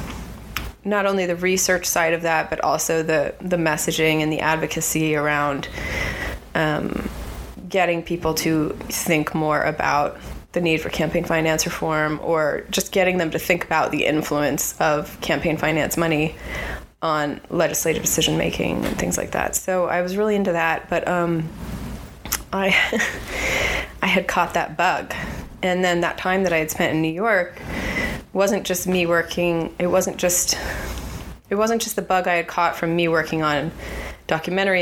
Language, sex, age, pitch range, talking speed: English, female, 20-39, 155-185 Hz, 160 wpm